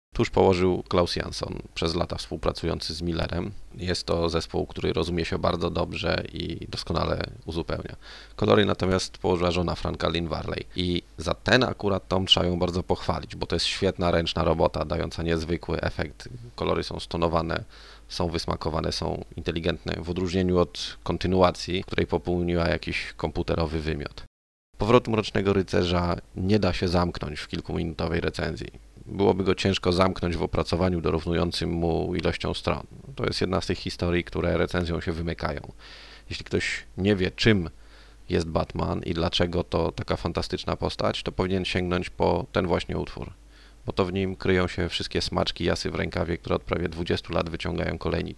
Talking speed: 160 wpm